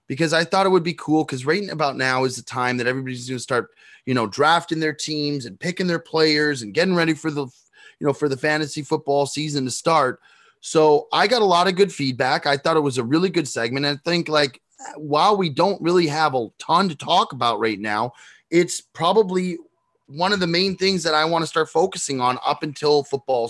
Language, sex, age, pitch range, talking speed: English, male, 20-39, 130-165 Hz, 235 wpm